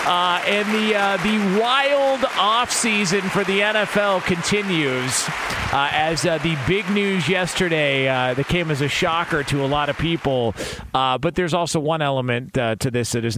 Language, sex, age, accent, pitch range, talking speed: English, male, 40-59, American, 125-170 Hz, 180 wpm